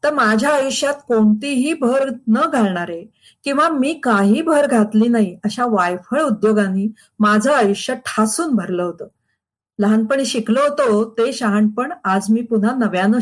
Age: 50-69